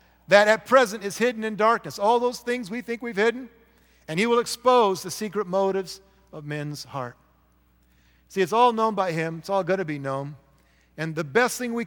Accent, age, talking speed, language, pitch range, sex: American, 50-69, 205 wpm, English, 150-220 Hz, male